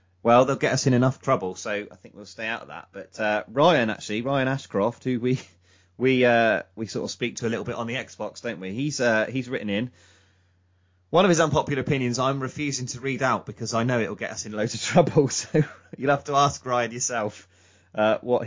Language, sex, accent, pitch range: English, male, British, 95-135 Hz